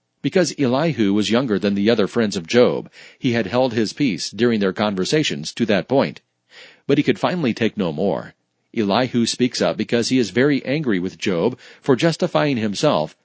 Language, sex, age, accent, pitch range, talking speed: English, male, 40-59, American, 100-125 Hz, 185 wpm